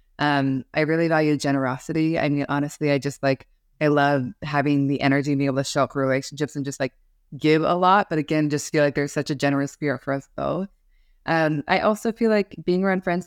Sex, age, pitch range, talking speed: female, 20-39, 140-160 Hz, 225 wpm